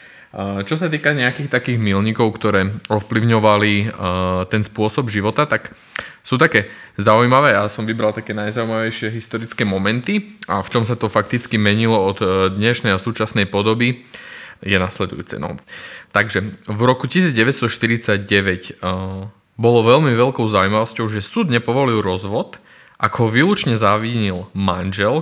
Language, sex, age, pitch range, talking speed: Slovak, male, 20-39, 95-115 Hz, 130 wpm